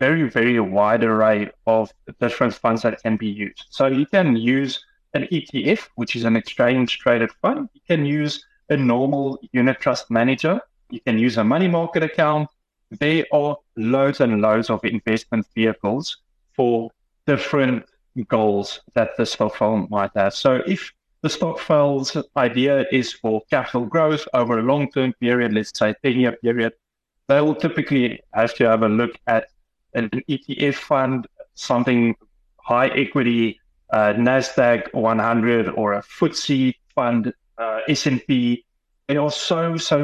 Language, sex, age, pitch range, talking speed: English, male, 30-49, 115-145 Hz, 150 wpm